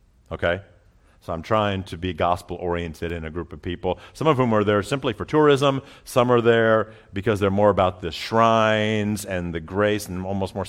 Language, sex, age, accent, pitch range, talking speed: English, male, 50-69, American, 90-115 Hz, 195 wpm